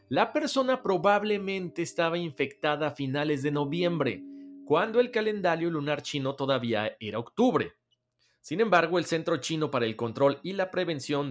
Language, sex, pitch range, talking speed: Spanish, male, 125-170 Hz, 150 wpm